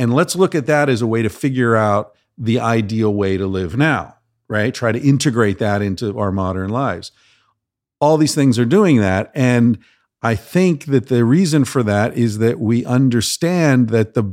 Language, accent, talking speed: English, American, 195 wpm